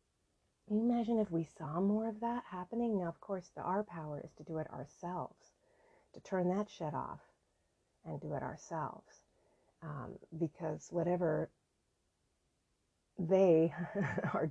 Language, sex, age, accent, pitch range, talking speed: English, female, 30-49, American, 160-215 Hz, 145 wpm